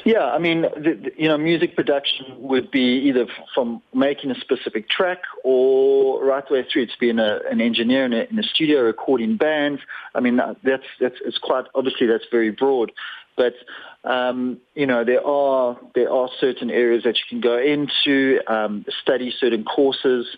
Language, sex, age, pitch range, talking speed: English, male, 40-59, 110-140 Hz, 190 wpm